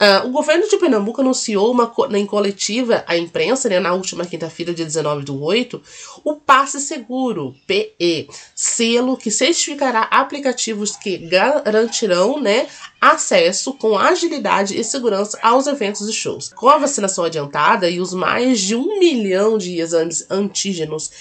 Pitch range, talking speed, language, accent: 175-260 Hz, 155 wpm, Portuguese, Brazilian